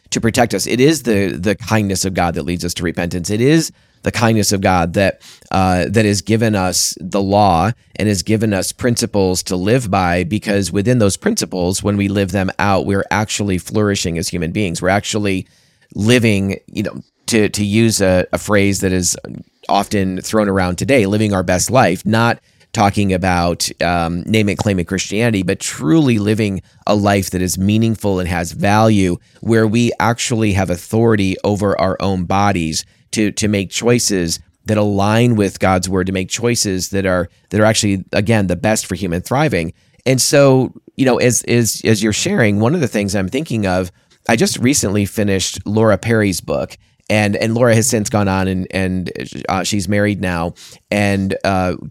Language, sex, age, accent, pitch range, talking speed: English, male, 30-49, American, 95-110 Hz, 190 wpm